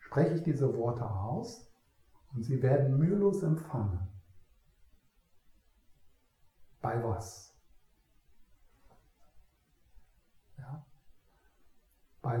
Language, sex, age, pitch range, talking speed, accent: German, male, 60-79, 110-140 Hz, 65 wpm, German